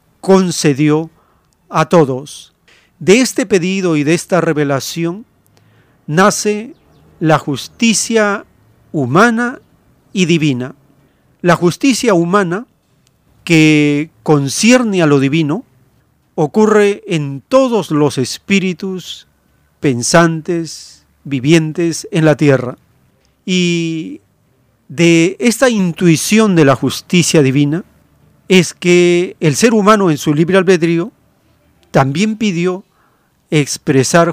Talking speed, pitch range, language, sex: 95 wpm, 145-190 Hz, Spanish, male